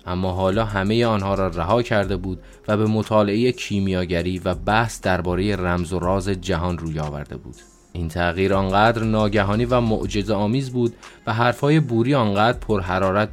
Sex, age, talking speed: male, 20-39, 160 wpm